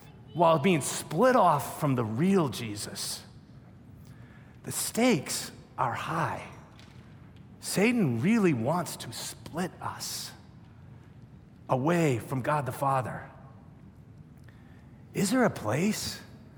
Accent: American